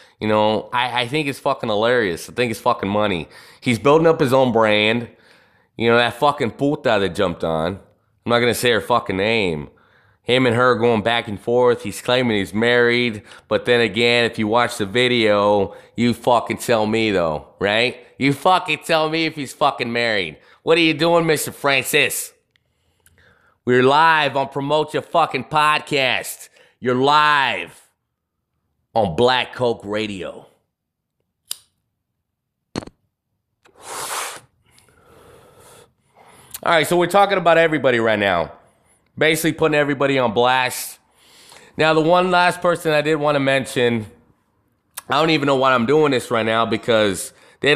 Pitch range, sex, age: 115-150 Hz, male, 20-39